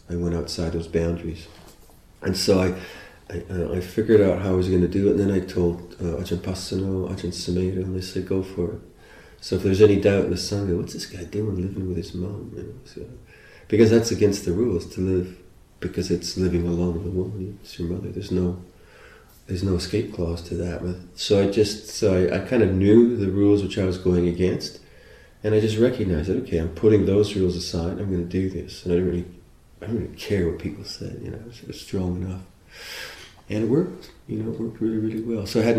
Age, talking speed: 30-49, 230 wpm